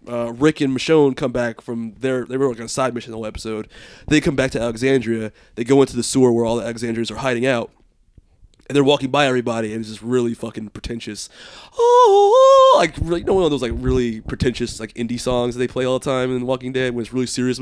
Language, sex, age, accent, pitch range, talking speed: English, male, 20-39, American, 115-160 Hz, 220 wpm